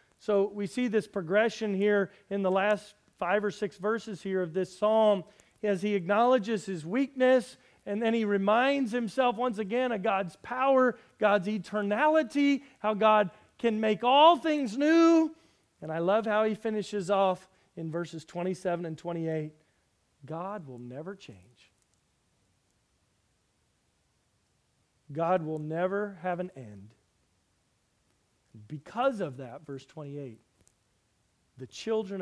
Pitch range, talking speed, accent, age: 150-220 Hz, 130 wpm, American, 40-59